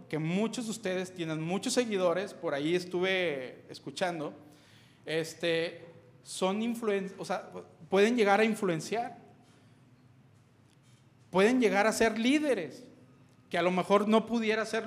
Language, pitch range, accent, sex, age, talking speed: Spanish, 155-210 Hz, Mexican, male, 40-59, 130 wpm